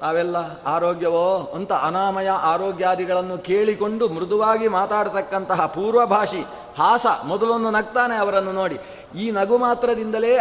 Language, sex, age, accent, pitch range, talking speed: Kannada, male, 30-49, native, 175-220 Hz, 100 wpm